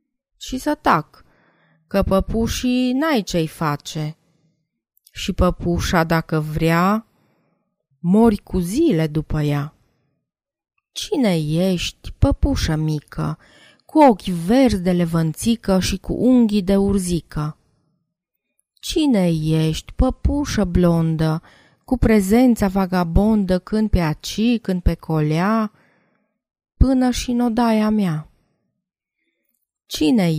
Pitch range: 160-225 Hz